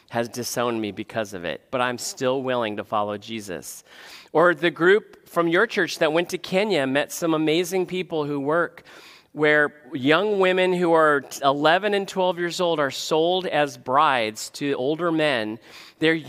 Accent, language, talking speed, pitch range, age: American, English, 175 wpm, 135-170 Hz, 40-59